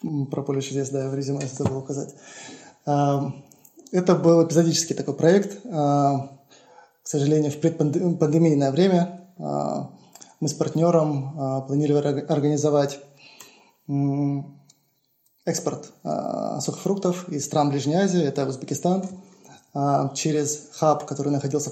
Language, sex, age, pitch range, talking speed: Russian, male, 20-39, 140-160 Hz, 100 wpm